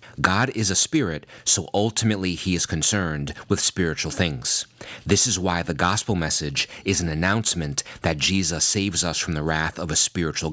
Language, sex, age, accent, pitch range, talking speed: English, male, 30-49, American, 80-100 Hz, 175 wpm